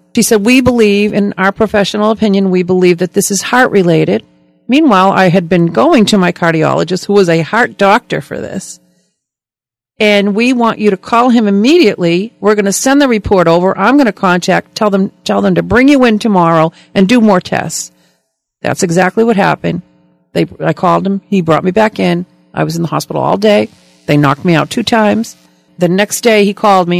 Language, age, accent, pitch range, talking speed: English, 50-69, American, 165-205 Hz, 210 wpm